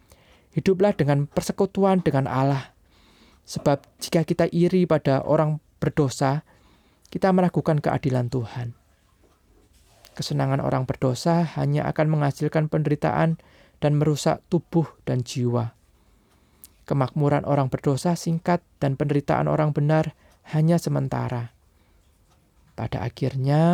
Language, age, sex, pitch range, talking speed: Indonesian, 20-39, male, 120-150 Hz, 100 wpm